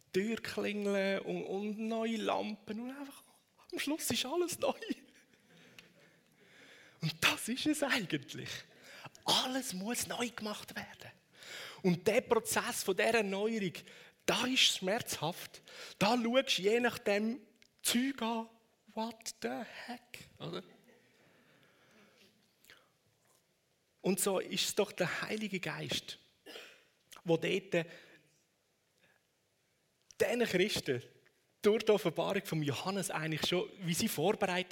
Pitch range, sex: 145-225 Hz, male